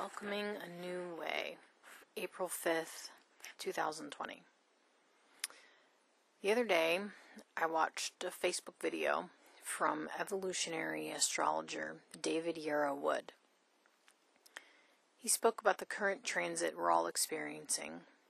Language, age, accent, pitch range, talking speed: English, 30-49, American, 160-190 Hz, 100 wpm